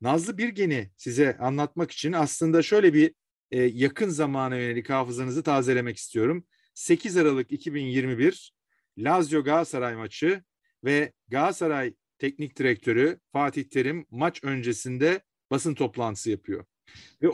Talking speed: 110 wpm